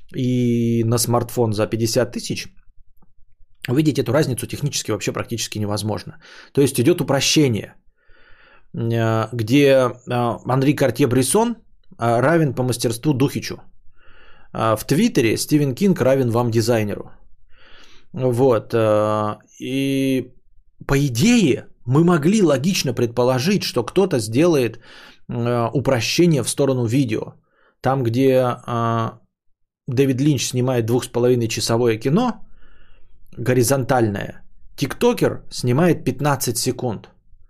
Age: 20-39